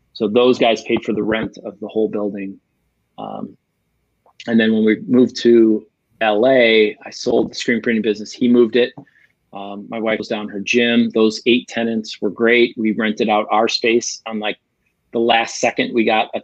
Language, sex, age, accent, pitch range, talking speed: English, male, 30-49, American, 110-120 Hz, 195 wpm